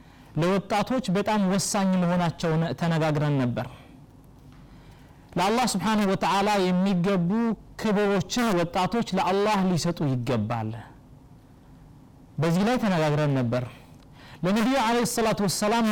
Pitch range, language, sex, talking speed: 150-235 Hz, Amharic, male, 100 wpm